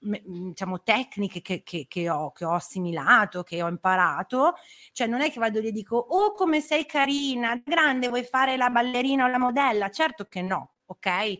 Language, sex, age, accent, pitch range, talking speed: Italian, female, 30-49, native, 190-245 Hz, 190 wpm